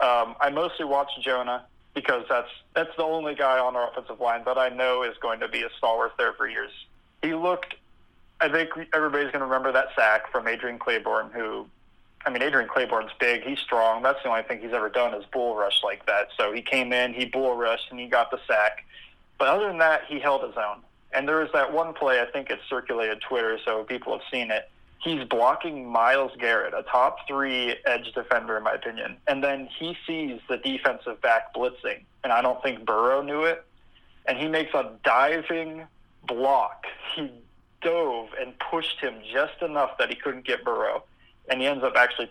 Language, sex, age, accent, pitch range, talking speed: English, male, 20-39, American, 125-165 Hz, 205 wpm